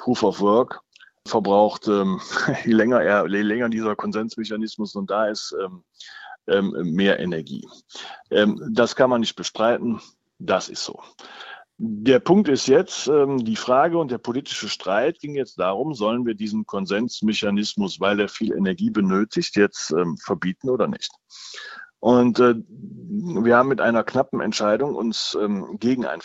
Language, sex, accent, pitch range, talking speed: German, male, German, 105-180 Hz, 150 wpm